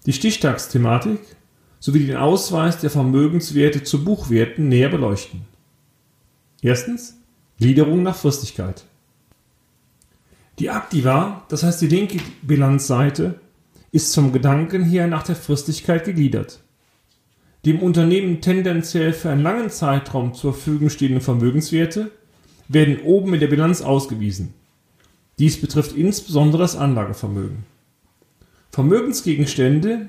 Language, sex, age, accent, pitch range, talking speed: German, male, 40-59, German, 130-165 Hz, 110 wpm